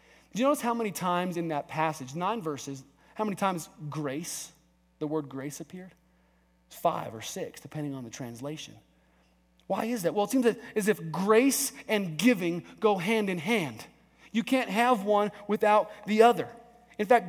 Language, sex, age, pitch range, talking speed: English, male, 30-49, 155-225 Hz, 175 wpm